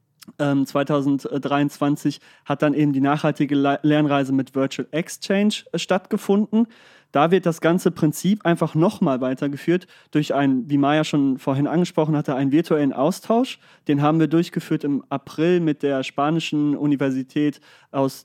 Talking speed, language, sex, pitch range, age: 135 wpm, German, male, 140-175 Hz, 30-49